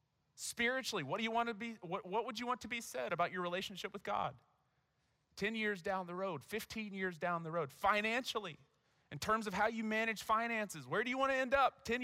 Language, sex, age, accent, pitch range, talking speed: English, male, 30-49, American, 185-235 Hz, 225 wpm